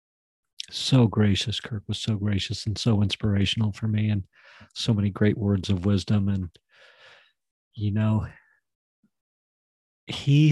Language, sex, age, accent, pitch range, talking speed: English, male, 40-59, American, 105-125 Hz, 125 wpm